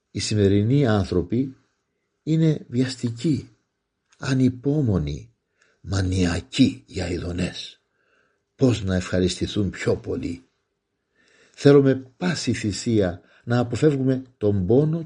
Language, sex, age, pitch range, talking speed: Greek, male, 50-69, 95-135 Hz, 85 wpm